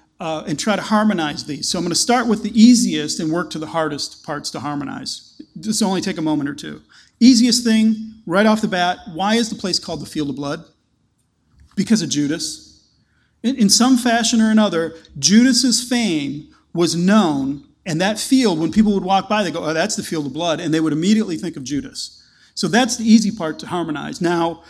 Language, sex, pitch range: English, male, 155-205 Hz